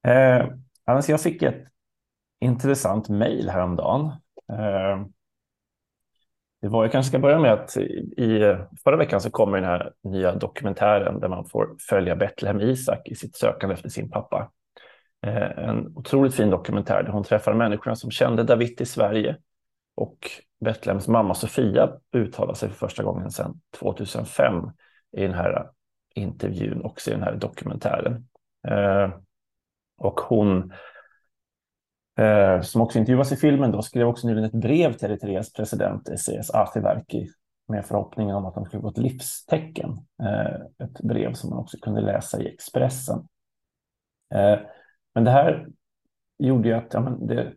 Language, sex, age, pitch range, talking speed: Swedish, male, 30-49, 100-125 Hz, 150 wpm